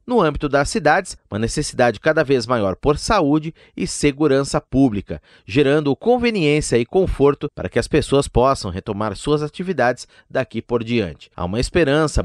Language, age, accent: Portuguese, 30-49, Brazilian